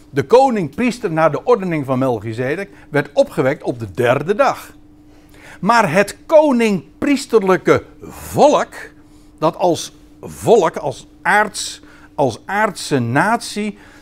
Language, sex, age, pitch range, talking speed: Dutch, male, 60-79, 135-220 Hz, 105 wpm